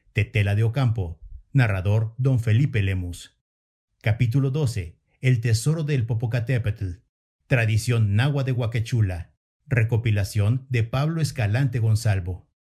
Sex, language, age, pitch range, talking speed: male, Spanish, 50-69, 100-130 Hz, 105 wpm